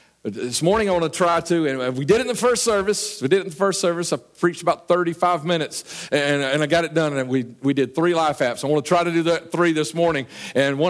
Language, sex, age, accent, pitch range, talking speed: English, male, 50-69, American, 140-185 Hz, 285 wpm